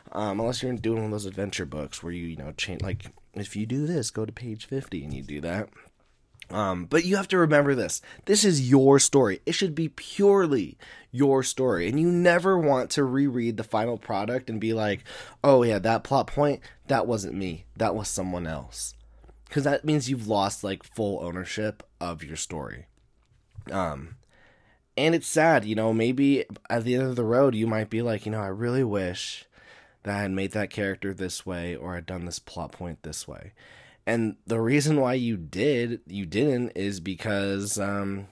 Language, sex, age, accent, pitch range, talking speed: English, male, 20-39, American, 100-135 Hz, 200 wpm